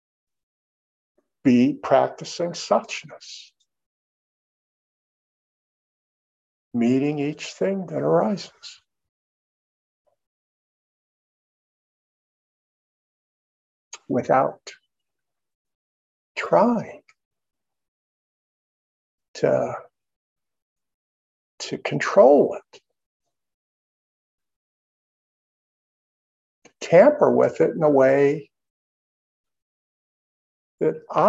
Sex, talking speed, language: male, 40 wpm, English